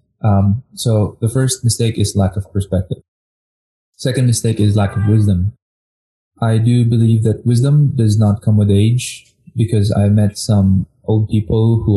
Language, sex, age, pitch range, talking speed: English, male, 20-39, 100-115 Hz, 160 wpm